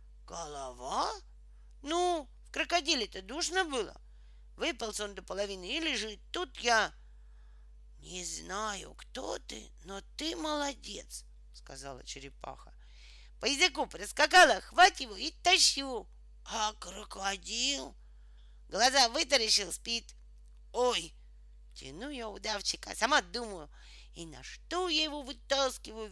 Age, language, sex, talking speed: 40-59, Russian, female, 115 wpm